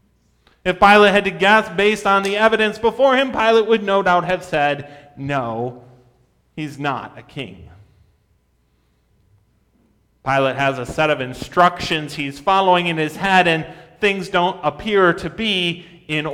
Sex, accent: male, American